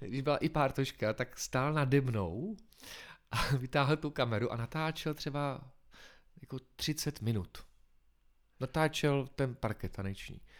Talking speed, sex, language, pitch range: 130 wpm, male, Czech, 110-145 Hz